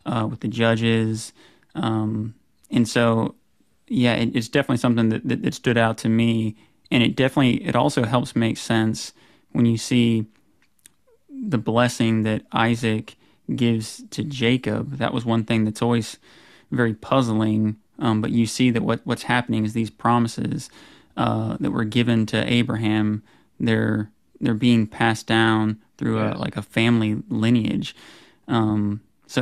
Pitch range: 110-120 Hz